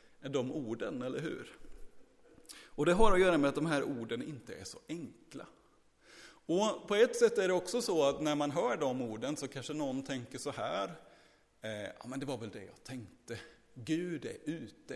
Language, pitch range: Swedish, 115-160 Hz